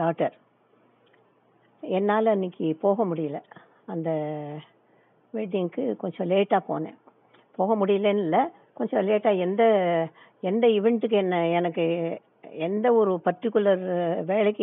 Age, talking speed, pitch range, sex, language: 60-79, 100 wpm, 165-200 Hz, female, Tamil